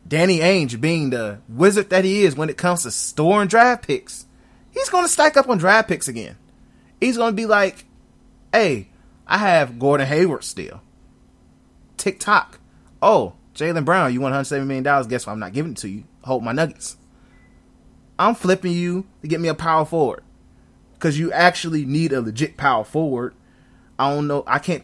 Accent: American